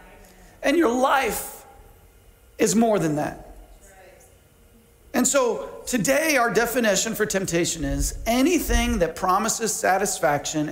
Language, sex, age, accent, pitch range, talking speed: English, male, 40-59, American, 185-265 Hz, 105 wpm